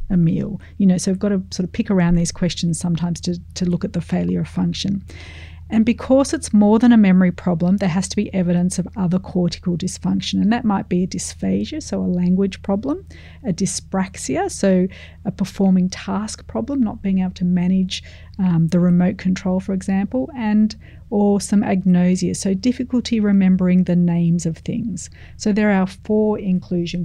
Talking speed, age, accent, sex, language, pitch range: 185 wpm, 40-59, Australian, female, English, 180-210 Hz